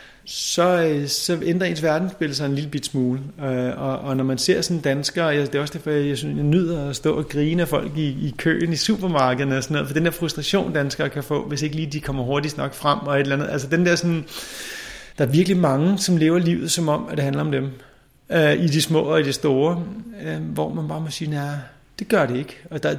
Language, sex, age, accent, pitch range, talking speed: Danish, male, 30-49, native, 135-165 Hz, 250 wpm